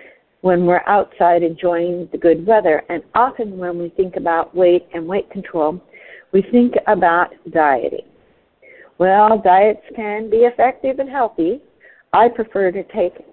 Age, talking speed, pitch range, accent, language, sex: 50-69, 145 wpm, 170-235 Hz, American, English, female